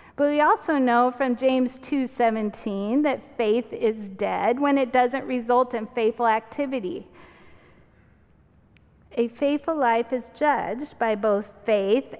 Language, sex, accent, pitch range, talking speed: English, female, American, 220-265 Hz, 130 wpm